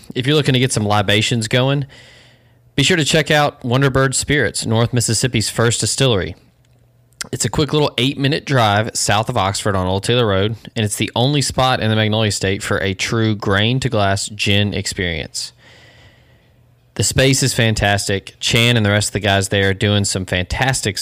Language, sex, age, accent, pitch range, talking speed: English, male, 20-39, American, 105-130 Hz, 190 wpm